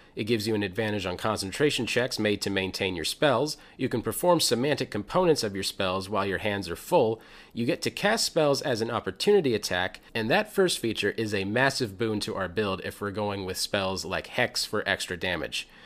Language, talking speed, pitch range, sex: English, 210 wpm, 100-130 Hz, male